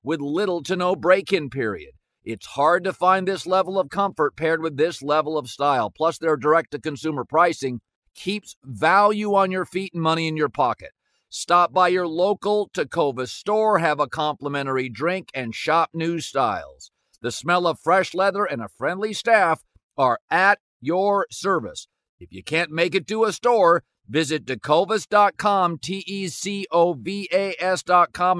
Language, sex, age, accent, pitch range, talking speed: English, male, 50-69, American, 155-185 Hz, 150 wpm